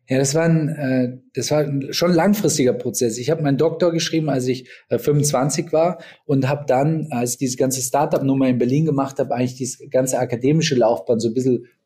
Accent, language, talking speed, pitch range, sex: German, German, 195 wpm, 120-145 Hz, male